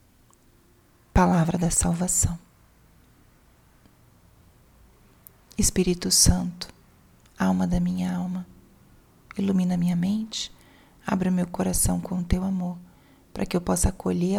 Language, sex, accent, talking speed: Portuguese, female, Brazilian, 100 wpm